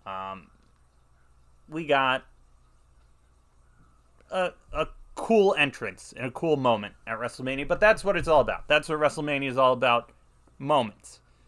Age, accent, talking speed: 30-49, American, 130 wpm